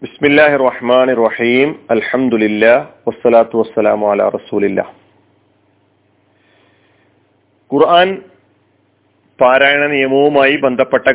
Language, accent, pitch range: Malayalam, native, 110-160 Hz